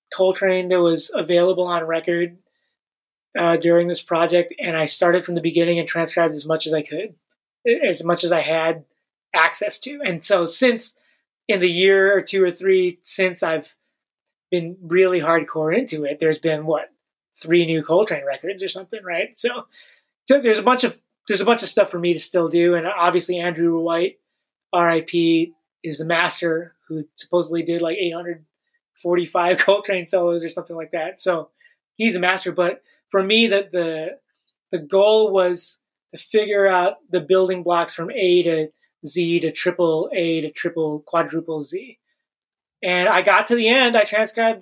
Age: 20-39